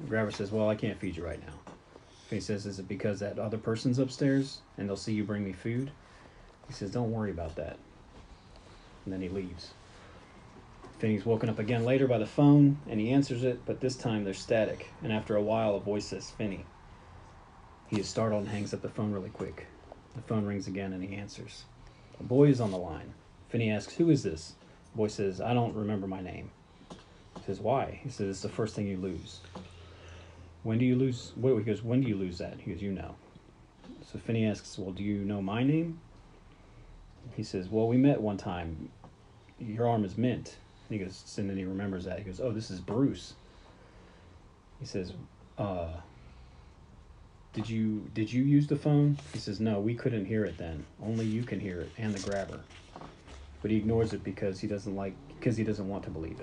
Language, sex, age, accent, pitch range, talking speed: English, male, 30-49, American, 95-115 Hz, 210 wpm